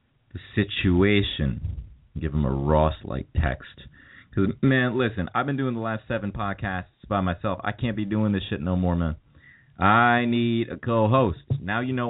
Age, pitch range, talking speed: 30-49, 85-115 Hz, 170 wpm